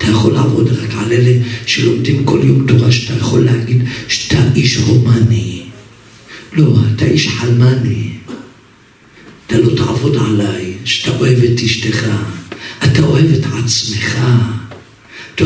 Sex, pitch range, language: male, 110-125 Hz, Hebrew